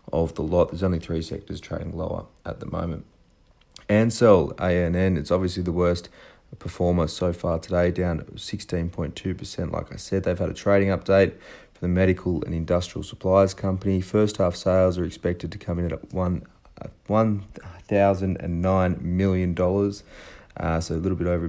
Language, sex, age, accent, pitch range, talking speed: English, male, 30-49, Australian, 85-95 Hz, 175 wpm